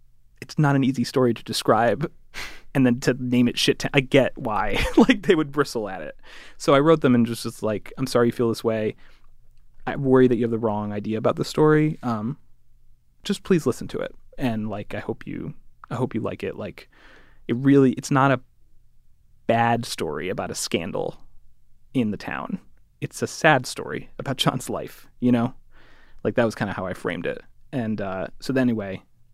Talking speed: 205 wpm